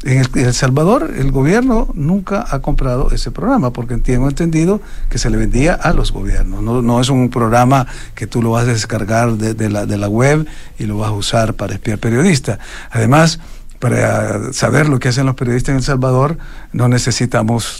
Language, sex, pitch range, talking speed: Spanish, male, 105-135 Hz, 190 wpm